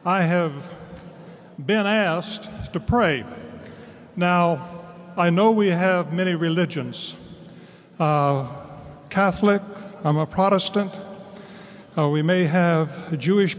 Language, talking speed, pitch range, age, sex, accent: English, 100 wpm, 160-195 Hz, 50-69, male, American